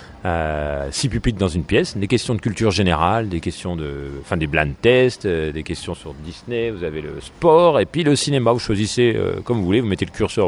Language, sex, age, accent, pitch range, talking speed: French, male, 30-49, French, 85-110 Hz, 230 wpm